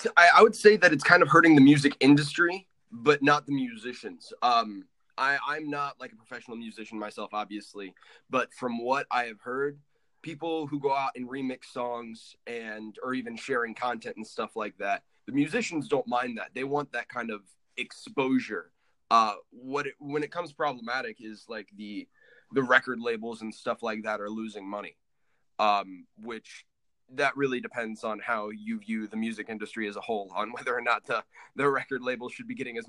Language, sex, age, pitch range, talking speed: English, male, 20-39, 115-150 Hz, 190 wpm